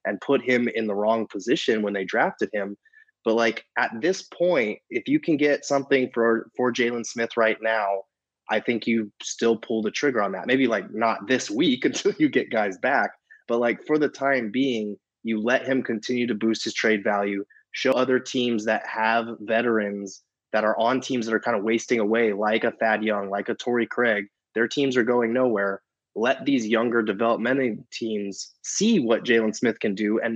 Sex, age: male, 20-39